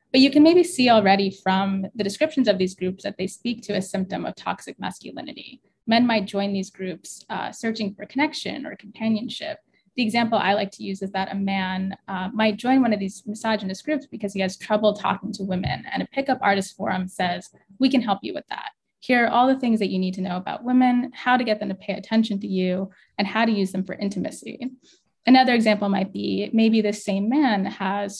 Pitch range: 195-230 Hz